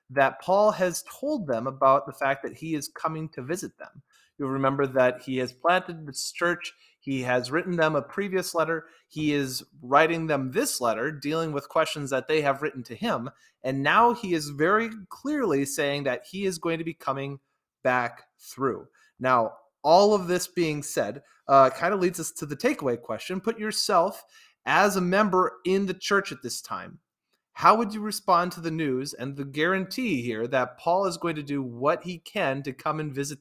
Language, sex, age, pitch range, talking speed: English, male, 30-49, 135-185 Hz, 200 wpm